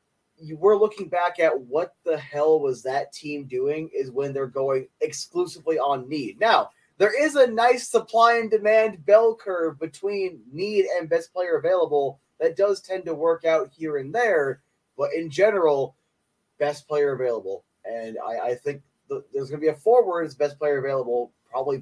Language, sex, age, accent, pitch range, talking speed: English, male, 20-39, American, 140-220 Hz, 180 wpm